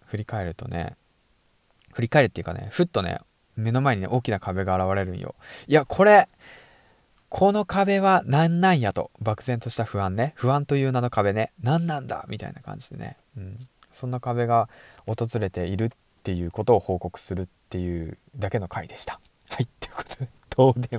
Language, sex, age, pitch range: Japanese, male, 20-39, 100-145 Hz